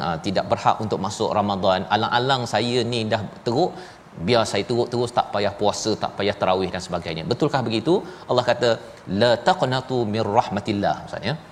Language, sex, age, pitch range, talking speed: Malayalam, male, 30-49, 115-140 Hz, 165 wpm